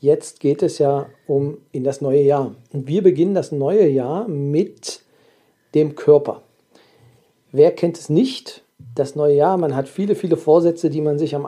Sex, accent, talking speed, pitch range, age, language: male, German, 180 wpm, 140-170 Hz, 40-59, German